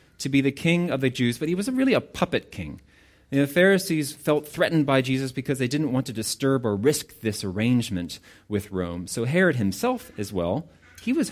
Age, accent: 30-49, American